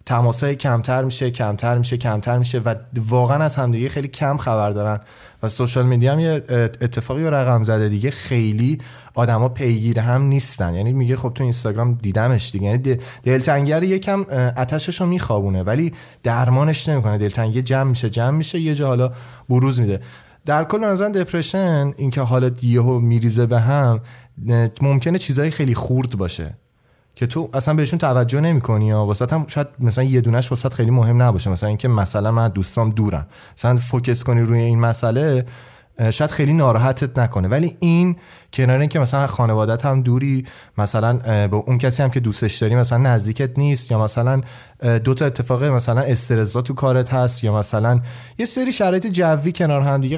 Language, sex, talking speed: Persian, male, 165 wpm